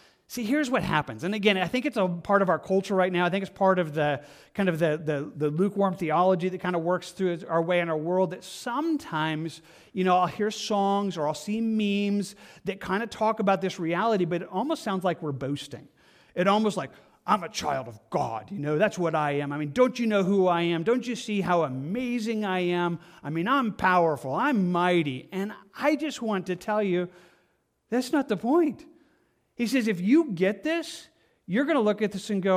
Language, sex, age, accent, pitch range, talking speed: English, male, 40-59, American, 180-230 Hz, 225 wpm